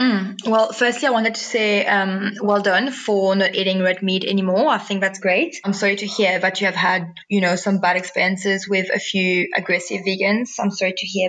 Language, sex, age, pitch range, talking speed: English, female, 20-39, 190-215 Hz, 225 wpm